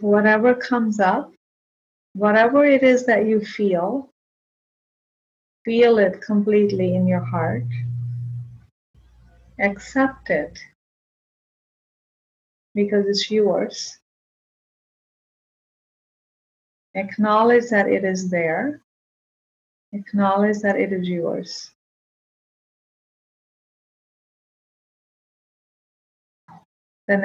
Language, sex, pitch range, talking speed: English, female, 165-215 Hz, 70 wpm